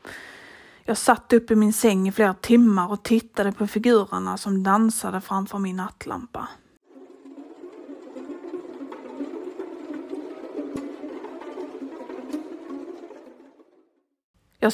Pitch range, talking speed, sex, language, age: 200-250 Hz, 75 wpm, female, Swedish, 30-49